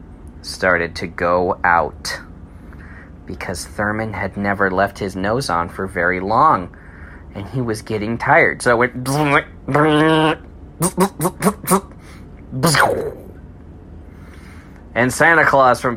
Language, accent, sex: English, American, male